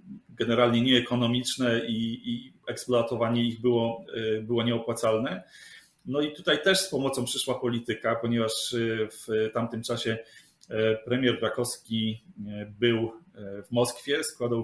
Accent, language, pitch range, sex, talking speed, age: native, Polish, 110-125 Hz, male, 110 wpm, 30-49